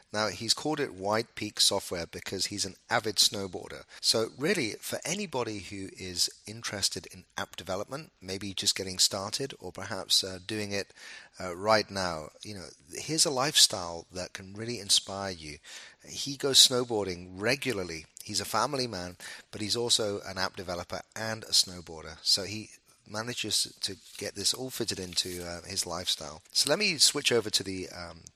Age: 30-49